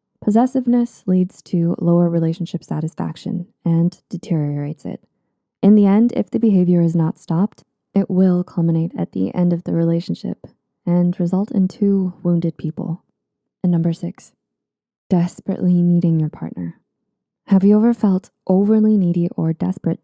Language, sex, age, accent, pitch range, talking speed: English, female, 20-39, American, 170-205 Hz, 145 wpm